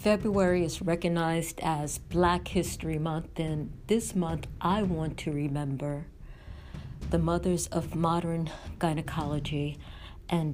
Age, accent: 50-69, American